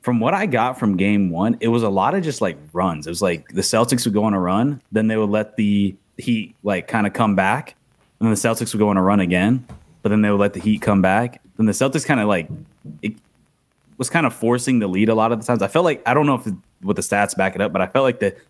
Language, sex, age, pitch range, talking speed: English, male, 20-39, 95-115 Hz, 300 wpm